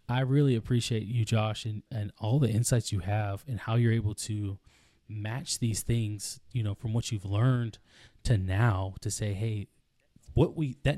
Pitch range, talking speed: 105-125 Hz, 185 wpm